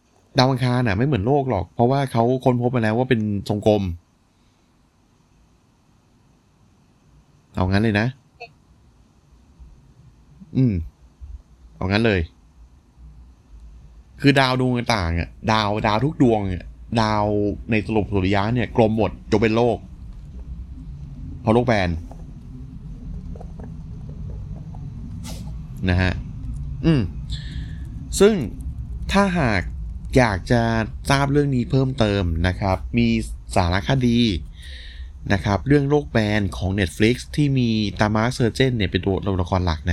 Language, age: Thai, 20-39